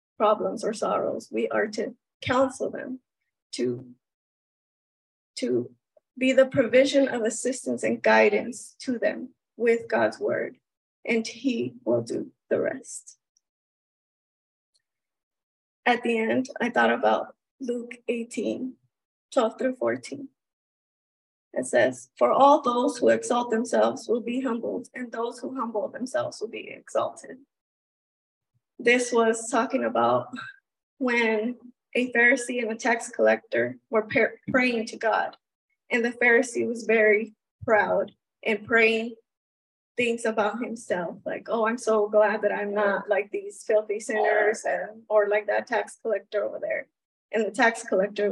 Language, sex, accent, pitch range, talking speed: English, female, American, 215-250 Hz, 135 wpm